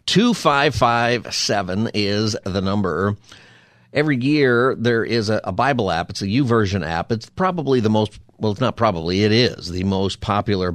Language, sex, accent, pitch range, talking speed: English, male, American, 95-120 Hz, 155 wpm